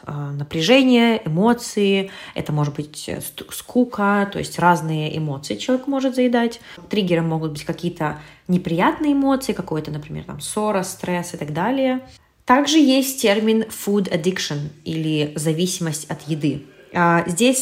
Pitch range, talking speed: 160-200 Hz, 125 wpm